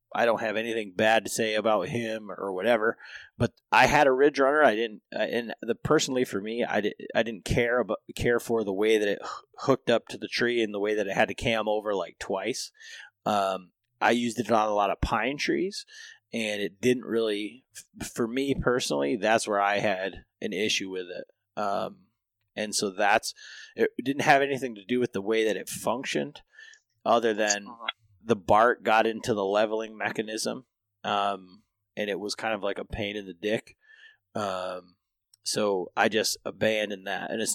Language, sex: English, male